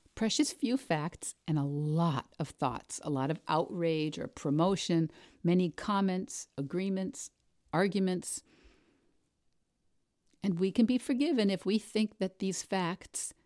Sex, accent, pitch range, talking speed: female, American, 160-200 Hz, 130 wpm